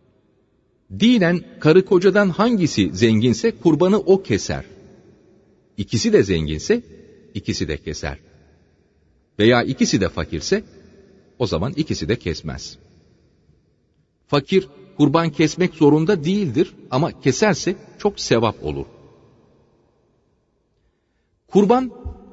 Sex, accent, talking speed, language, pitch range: male, native, 90 wpm, Turkish, 105-150 Hz